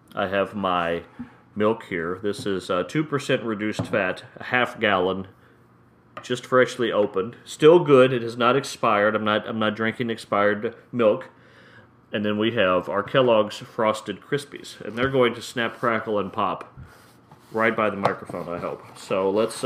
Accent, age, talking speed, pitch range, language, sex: American, 30-49, 165 wpm, 100-125 Hz, English, male